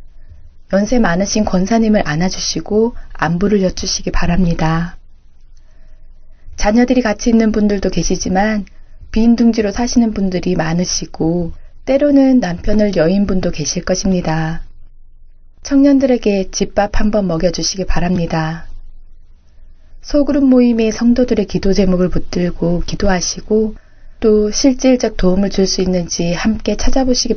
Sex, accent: female, native